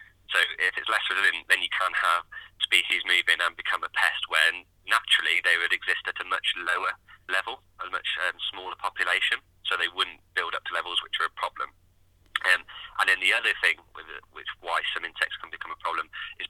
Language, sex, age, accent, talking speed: English, male, 20-39, British, 205 wpm